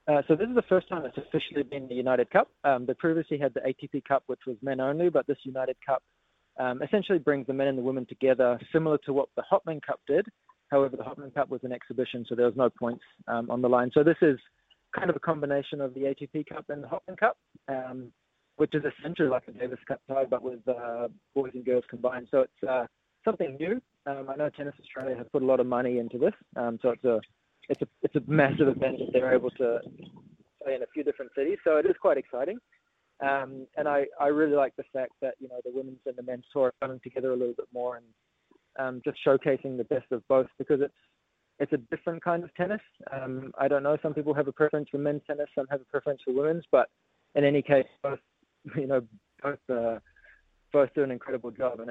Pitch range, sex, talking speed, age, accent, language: 125-145 Hz, male, 240 wpm, 20-39, Australian, English